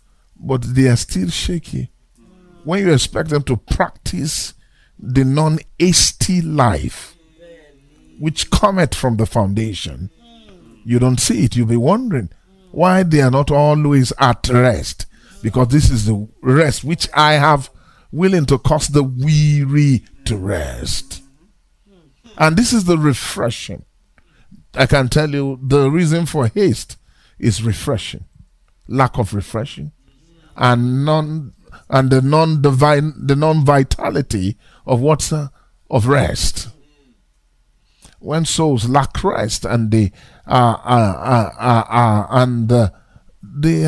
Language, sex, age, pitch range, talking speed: English, male, 50-69, 115-155 Hz, 125 wpm